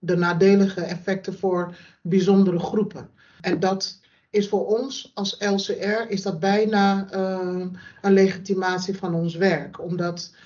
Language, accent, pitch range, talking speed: Dutch, Dutch, 185-210 Hz, 120 wpm